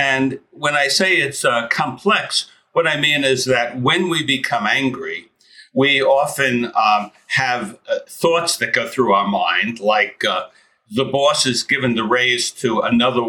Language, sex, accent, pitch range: English, male, American, 125-150 Hz